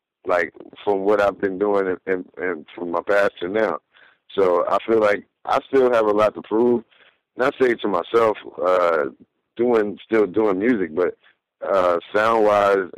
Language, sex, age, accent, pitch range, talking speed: English, male, 50-69, American, 95-110 Hz, 175 wpm